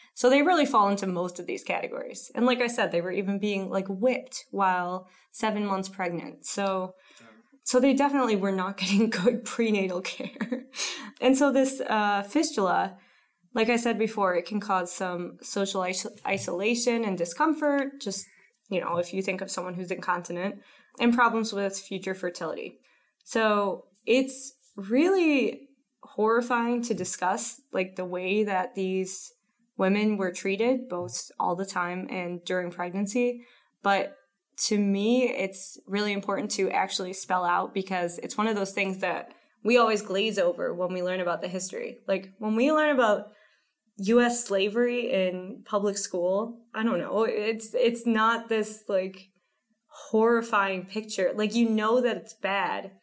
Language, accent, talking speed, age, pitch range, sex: English, American, 160 wpm, 20-39, 190-240 Hz, female